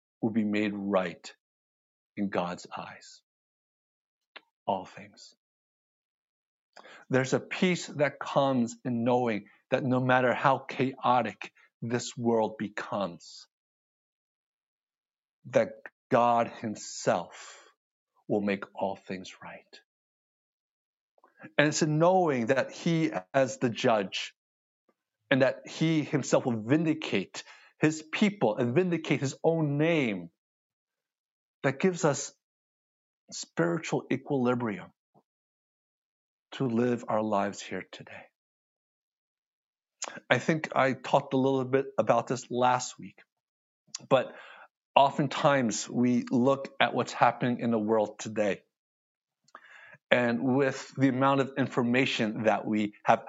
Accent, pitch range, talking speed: American, 110-140 Hz, 110 wpm